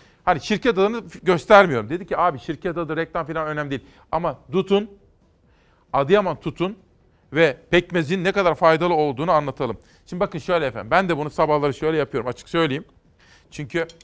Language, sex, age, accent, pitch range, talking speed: Turkish, male, 40-59, native, 140-180 Hz, 160 wpm